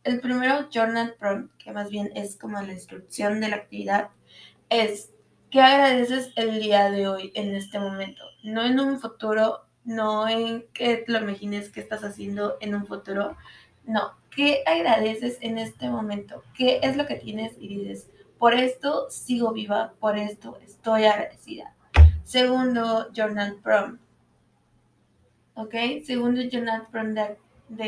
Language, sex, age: Spanish, female, 20-39